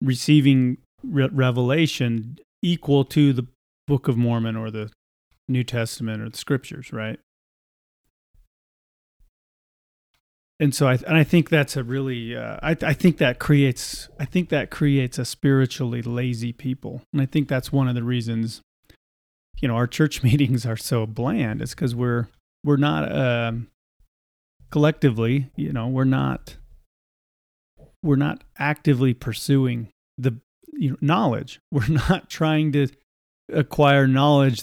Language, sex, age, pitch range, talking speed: English, male, 40-59, 120-150 Hz, 145 wpm